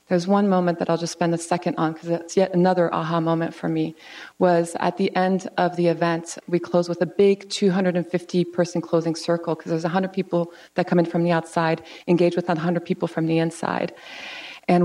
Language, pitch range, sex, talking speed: English, 170-190 Hz, female, 205 wpm